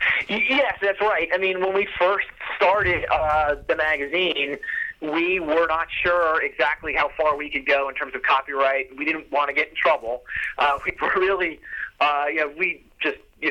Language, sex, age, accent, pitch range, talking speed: English, male, 30-49, American, 130-170 Hz, 190 wpm